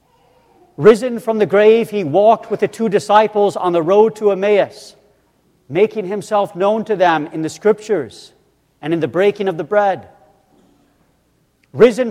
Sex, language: male, English